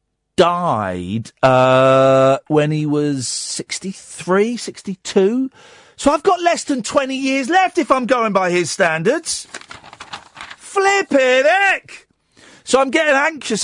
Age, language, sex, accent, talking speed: 40-59, English, male, British, 120 wpm